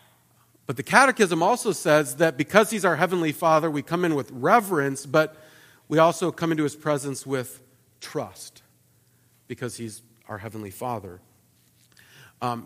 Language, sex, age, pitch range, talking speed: English, male, 40-59, 115-170 Hz, 145 wpm